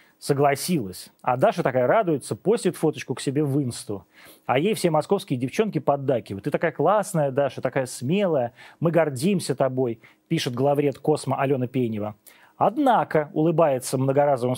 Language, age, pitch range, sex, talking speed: Russian, 30-49, 130-180 Hz, male, 140 wpm